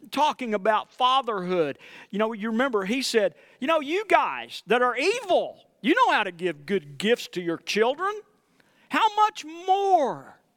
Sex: male